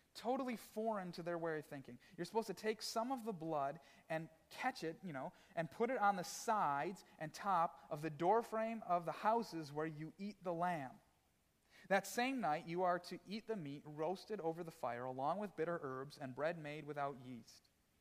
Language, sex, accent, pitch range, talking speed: English, male, American, 140-185 Hz, 205 wpm